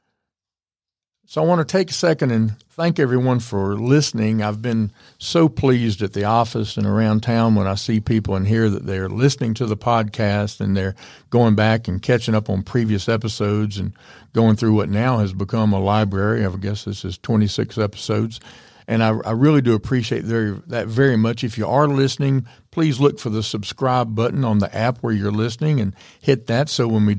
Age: 50-69